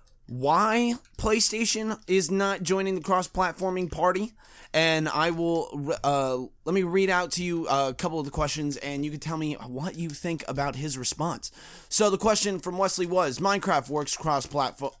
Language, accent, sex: English, American, male